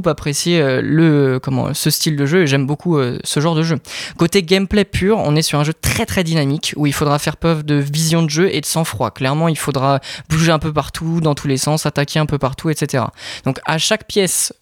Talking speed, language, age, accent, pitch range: 235 wpm, French, 20-39, French, 140-165 Hz